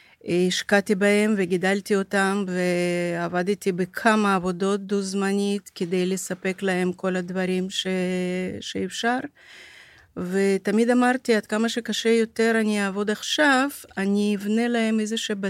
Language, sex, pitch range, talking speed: Hebrew, female, 185-230 Hz, 110 wpm